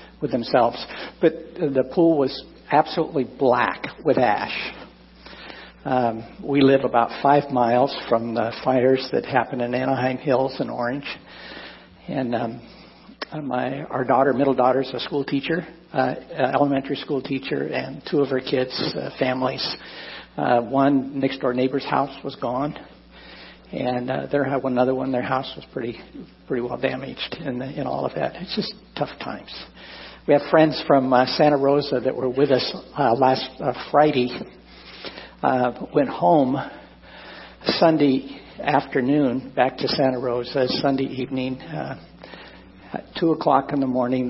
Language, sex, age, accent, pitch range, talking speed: English, male, 60-79, American, 125-140 Hz, 150 wpm